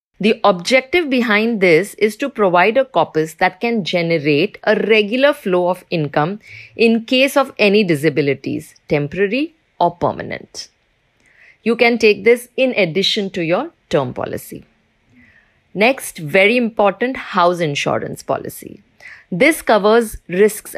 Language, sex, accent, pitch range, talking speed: English, female, Indian, 180-235 Hz, 125 wpm